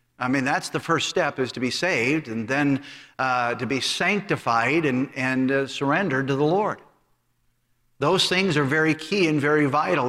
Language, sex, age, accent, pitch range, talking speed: English, male, 50-69, American, 135-160 Hz, 185 wpm